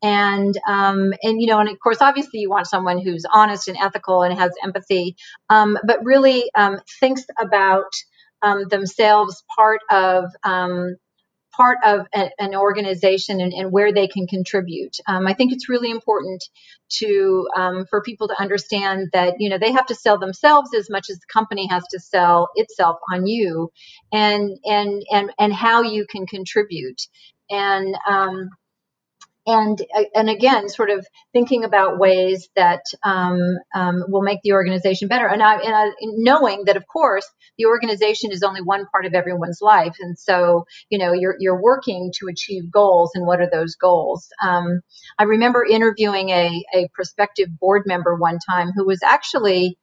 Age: 40-59